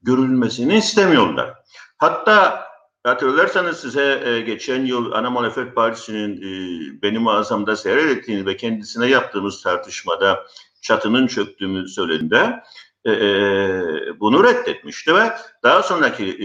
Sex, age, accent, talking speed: male, 50-69, native, 90 wpm